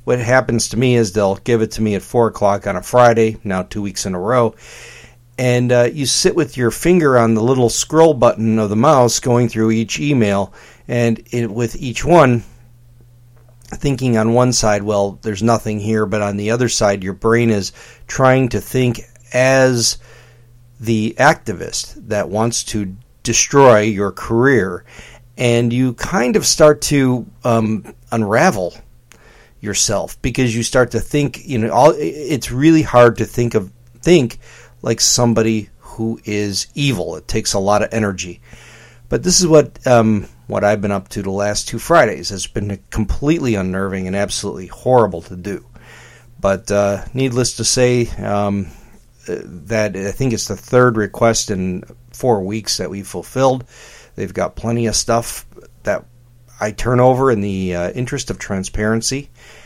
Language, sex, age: English, male, 50-69